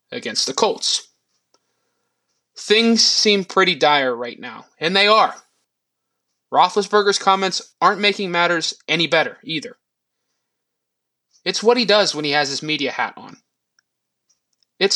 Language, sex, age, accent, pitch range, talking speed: English, male, 20-39, American, 145-205 Hz, 130 wpm